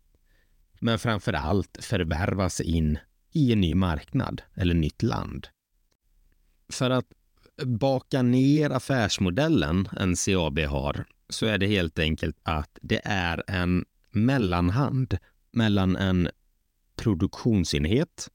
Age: 30-49